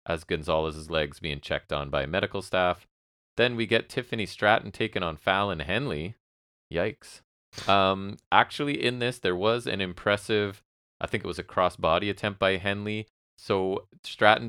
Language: English